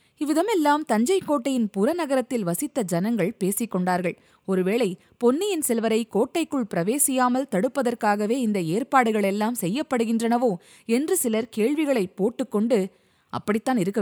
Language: Tamil